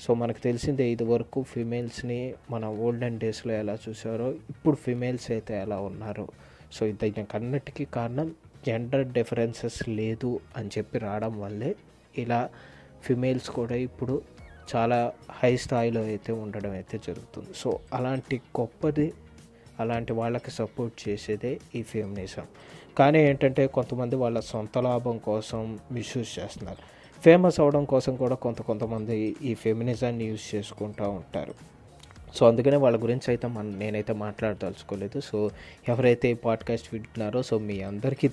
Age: 20-39